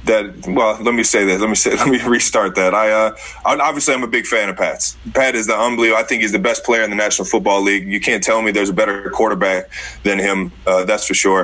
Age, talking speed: 20-39, 270 wpm